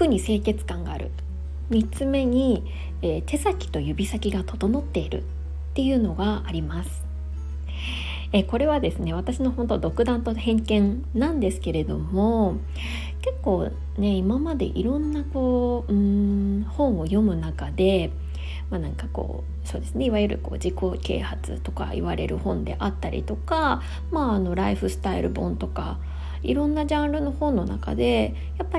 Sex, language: female, Japanese